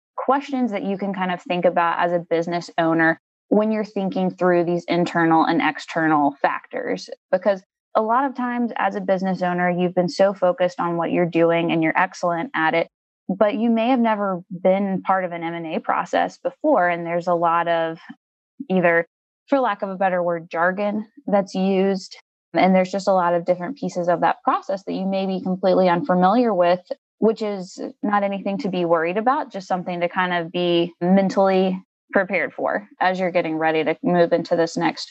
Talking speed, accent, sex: 195 wpm, American, female